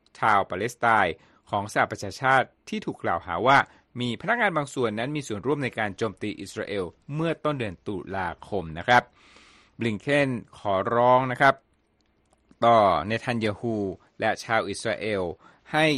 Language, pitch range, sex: Thai, 105-140 Hz, male